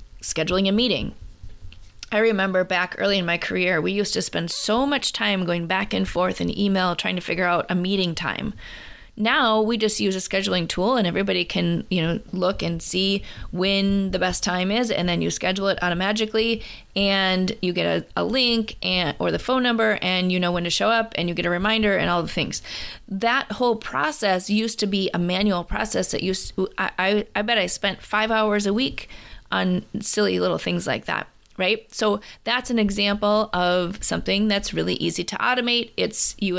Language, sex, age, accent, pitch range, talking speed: English, female, 20-39, American, 180-220 Hz, 200 wpm